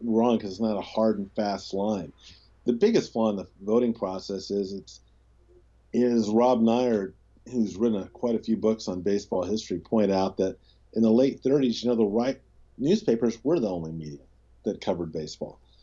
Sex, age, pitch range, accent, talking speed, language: male, 40-59, 90-115 Hz, American, 185 wpm, English